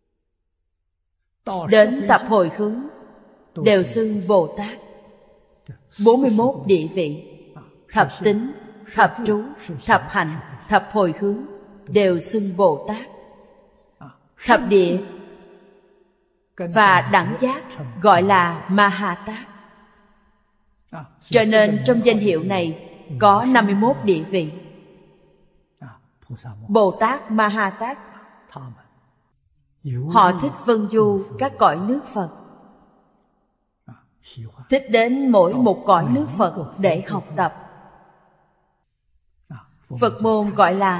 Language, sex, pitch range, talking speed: Vietnamese, female, 165-225 Hz, 100 wpm